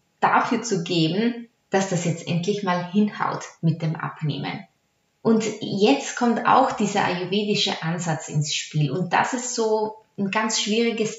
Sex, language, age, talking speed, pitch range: female, German, 20-39, 150 wpm, 165-215 Hz